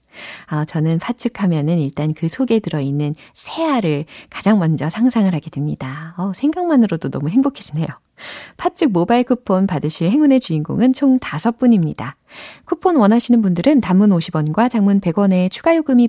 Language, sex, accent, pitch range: Korean, female, native, 165-260 Hz